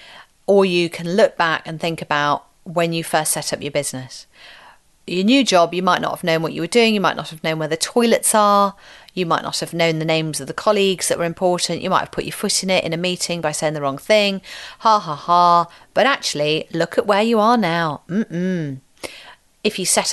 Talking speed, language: 240 wpm, English